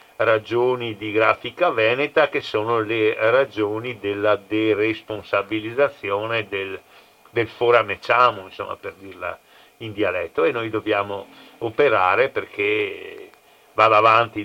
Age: 50-69